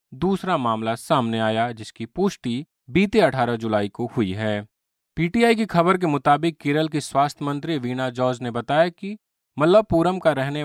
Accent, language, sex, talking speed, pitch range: native, Hindi, male, 165 wpm, 125-165 Hz